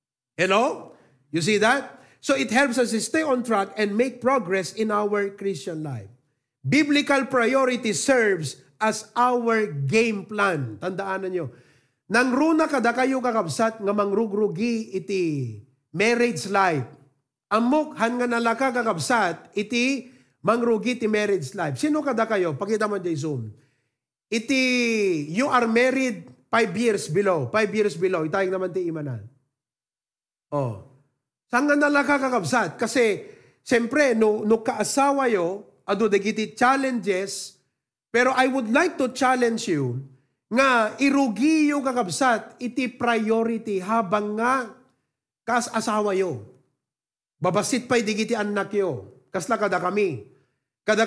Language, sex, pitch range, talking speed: English, male, 170-245 Hz, 135 wpm